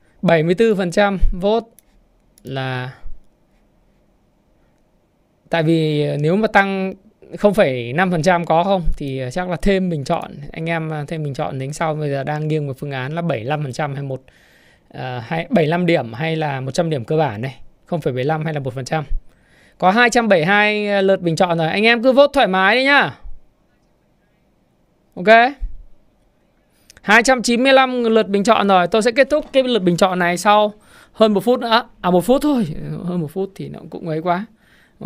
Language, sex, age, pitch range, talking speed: Vietnamese, male, 20-39, 155-200 Hz, 165 wpm